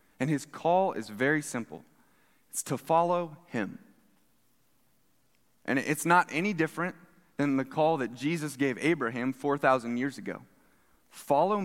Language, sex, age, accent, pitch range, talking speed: English, male, 20-39, American, 145-185 Hz, 135 wpm